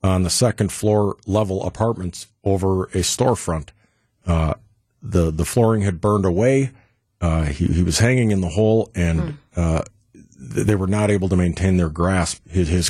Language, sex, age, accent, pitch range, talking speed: English, male, 50-69, American, 85-110 Hz, 165 wpm